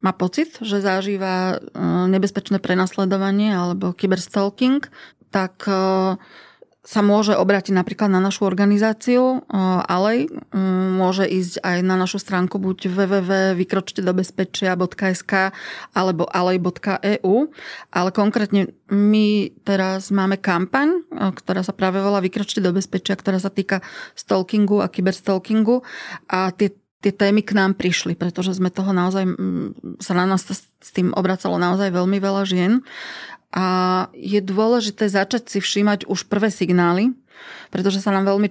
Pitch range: 185-200 Hz